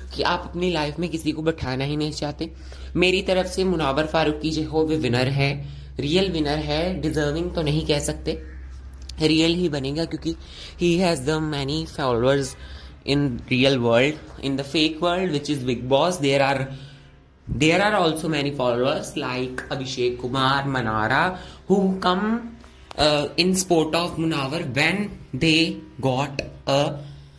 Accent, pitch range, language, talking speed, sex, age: native, 130-170 Hz, Hindi, 155 wpm, male, 20-39